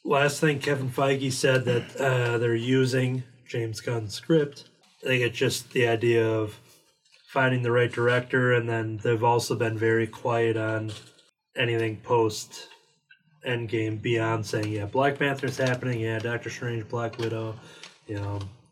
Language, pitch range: English, 110-135 Hz